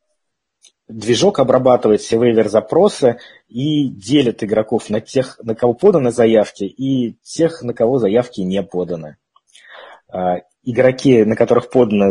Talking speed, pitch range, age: 120 wpm, 105-135 Hz, 20-39